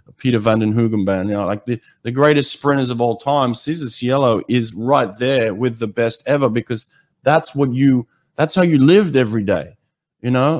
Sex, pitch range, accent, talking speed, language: male, 100-130 Hz, Australian, 200 wpm, English